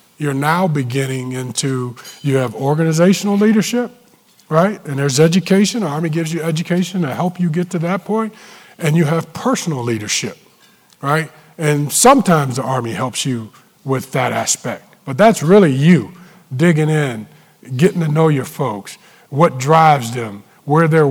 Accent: American